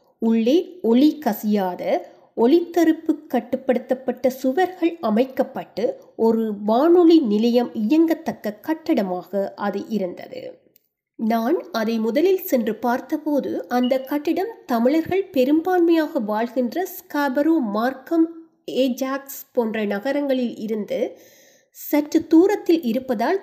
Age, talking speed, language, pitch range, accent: 20-39, 85 wpm, Tamil, 230-310 Hz, native